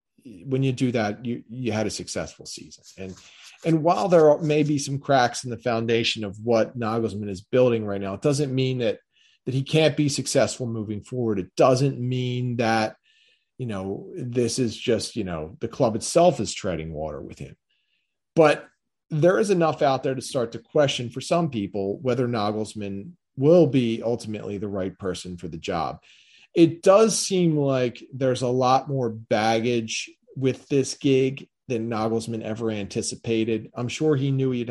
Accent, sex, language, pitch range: American, male, English, 110-135 Hz